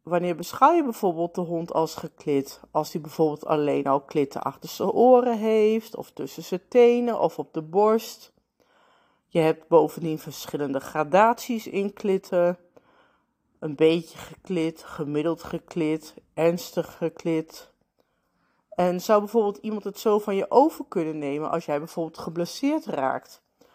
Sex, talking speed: female, 140 wpm